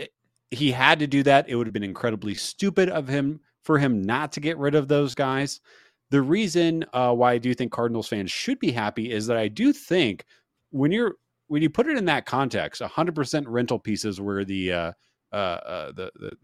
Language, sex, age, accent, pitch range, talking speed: English, male, 30-49, American, 110-150 Hz, 215 wpm